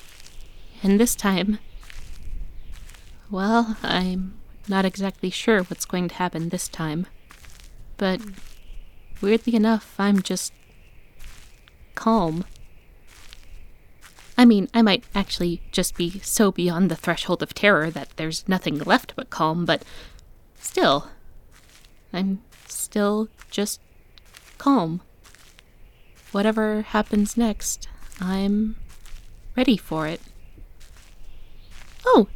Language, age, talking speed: English, 20-39, 100 wpm